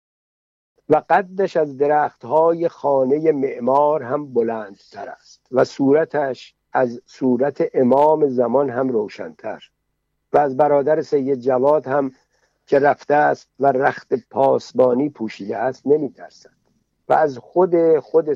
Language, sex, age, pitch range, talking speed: Persian, male, 60-79, 125-150 Hz, 120 wpm